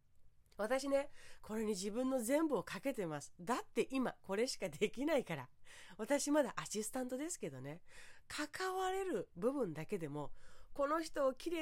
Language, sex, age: Japanese, female, 30-49